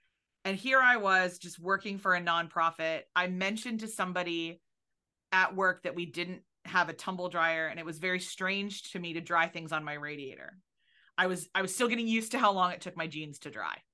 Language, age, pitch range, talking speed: English, 30-49, 165-205 Hz, 220 wpm